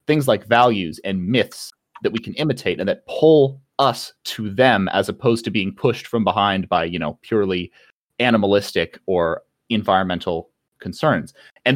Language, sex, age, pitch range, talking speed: English, male, 30-49, 95-130 Hz, 160 wpm